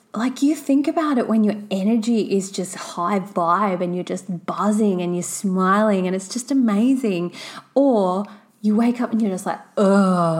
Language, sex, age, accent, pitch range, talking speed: English, female, 20-39, Australian, 175-230 Hz, 185 wpm